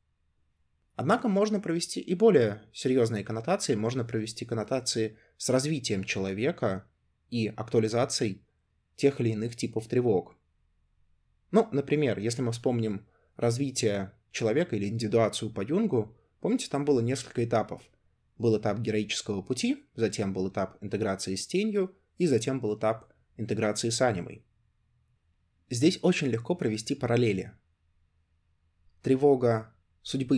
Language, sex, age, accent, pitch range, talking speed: Russian, male, 20-39, native, 95-125 Hz, 120 wpm